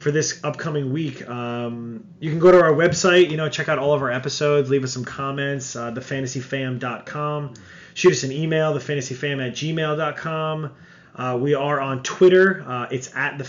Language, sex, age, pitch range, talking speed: English, male, 30-49, 135-165 Hz, 195 wpm